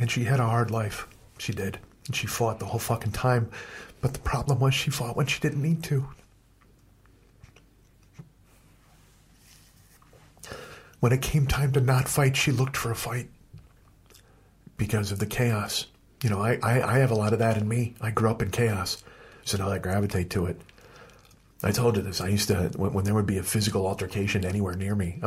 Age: 50-69